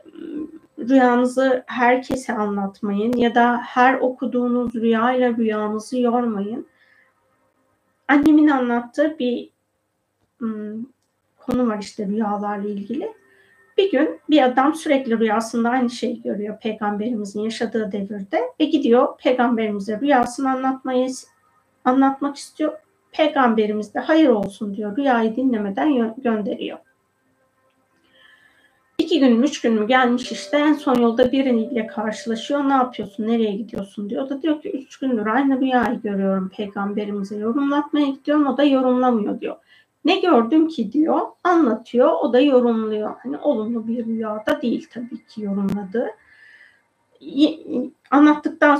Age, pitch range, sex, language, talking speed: 40-59, 220-275 Hz, female, Turkish, 120 wpm